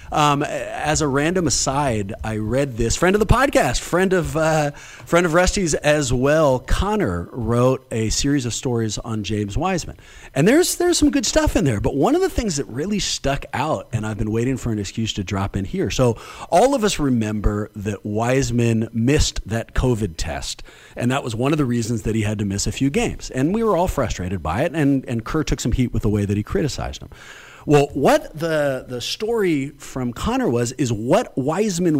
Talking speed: 215 wpm